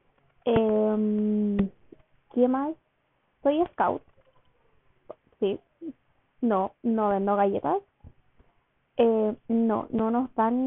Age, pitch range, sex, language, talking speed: 20-39, 220-260 Hz, female, Spanish, 85 wpm